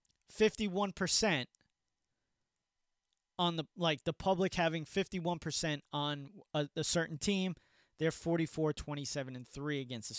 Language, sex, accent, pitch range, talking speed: English, male, American, 135-175 Hz, 130 wpm